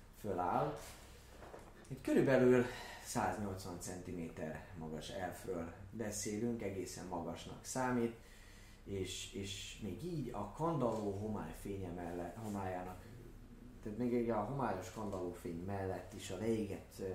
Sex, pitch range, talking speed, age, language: male, 85-105 Hz, 110 wpm, 30-49, Hungarian